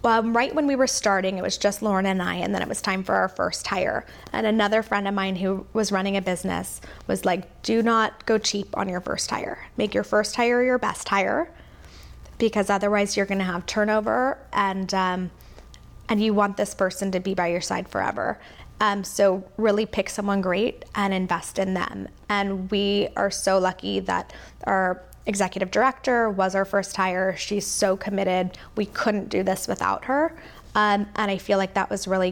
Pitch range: 190-210 Hz